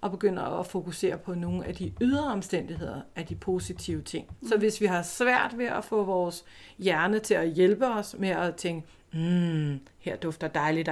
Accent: native